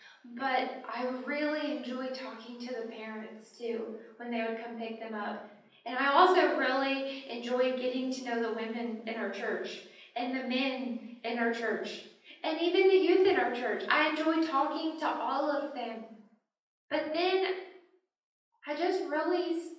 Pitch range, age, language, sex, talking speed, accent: 240-290 Hz, 10-29, English, female, 165 wpm, American